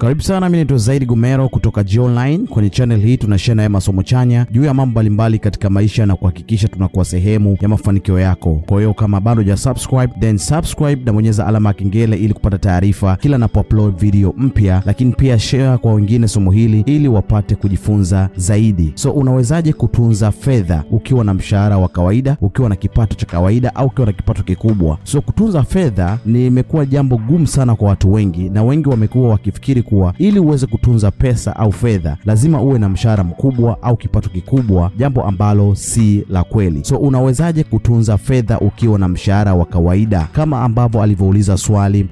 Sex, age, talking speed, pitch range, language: male, 30-49, 180 wpm, 100-125 Hz, Swahili